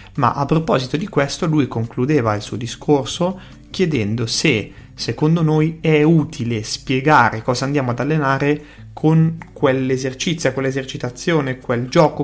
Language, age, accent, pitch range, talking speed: Italian, 30-49, native, 120-150 Hz, 125 wpm